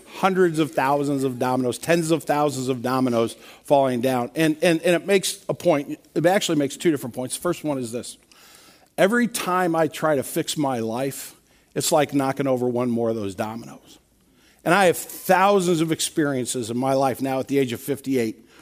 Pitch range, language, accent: 130-160 Hz, English, American